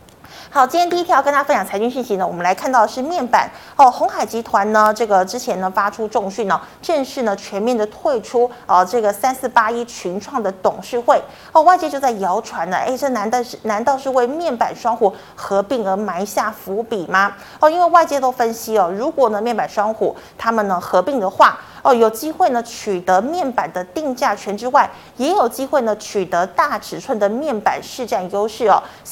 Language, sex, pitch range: Chinese, female, 200-260 Hz